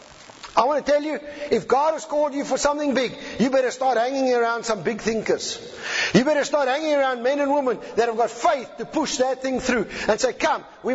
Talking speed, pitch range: 230 wpm, 230-305 Hz